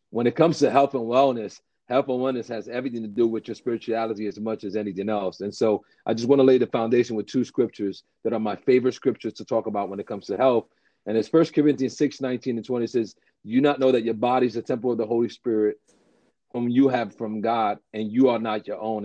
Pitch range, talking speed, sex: 110-130 Hz, 250 wpm, male